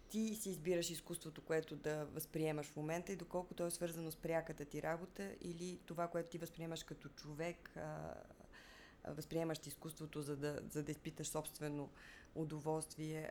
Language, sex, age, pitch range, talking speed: Bulgarian, female, 20-39, 150-170 Hz, 150 wpm